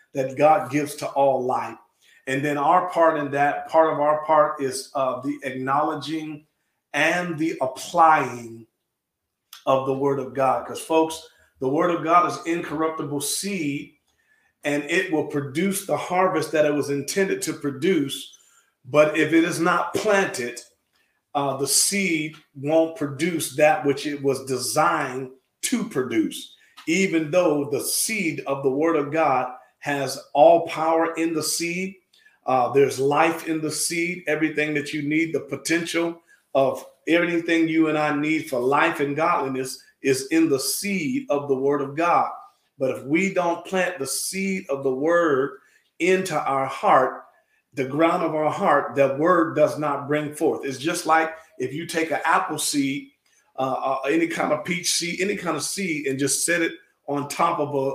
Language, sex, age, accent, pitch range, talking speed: English, male, 40-59, American, 140-170 Hz, 170 wpm